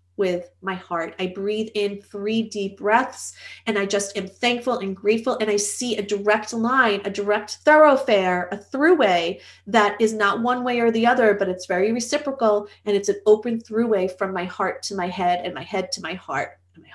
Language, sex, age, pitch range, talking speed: English, female, 30-49, 180-235 Hz, 205 wpm